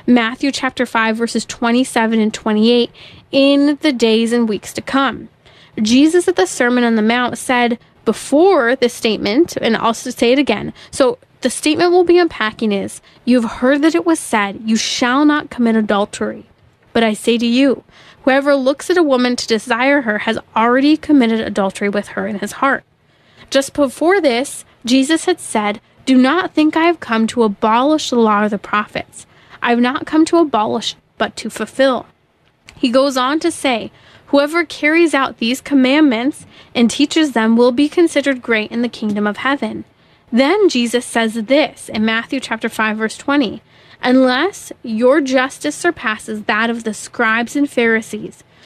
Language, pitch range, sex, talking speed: English, 225-285 Hz, female, 170 wpm